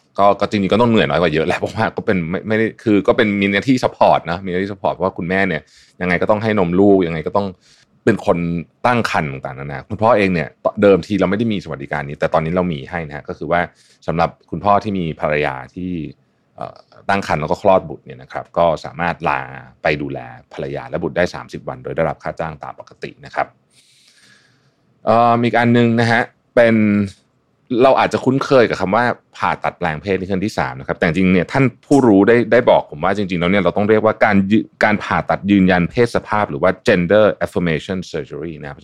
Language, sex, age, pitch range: Thai, male, 20-39, 80-105 Hz